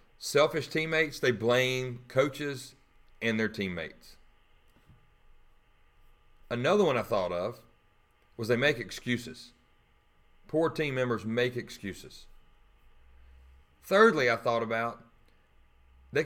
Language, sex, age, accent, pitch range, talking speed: English, male, 40-59, American, 95-135 Hz, 100 wpm